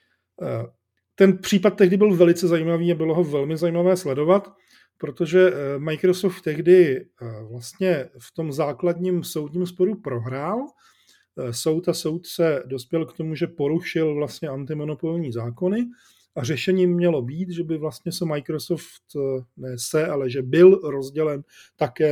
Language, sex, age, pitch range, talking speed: Czech, male, 40-59, 135-175 Hz, 135 wpm